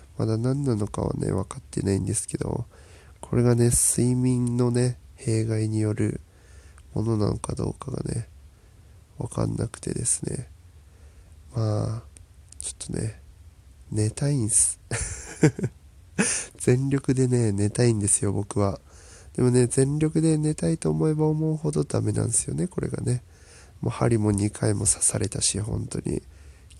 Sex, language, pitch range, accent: male, Japanese, 85-125 Hz, native